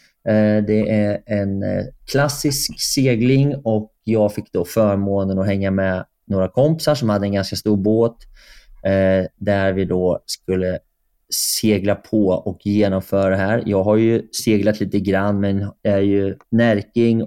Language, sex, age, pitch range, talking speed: Swedish, male, 20-39, 100-115 Hz, 140 wpm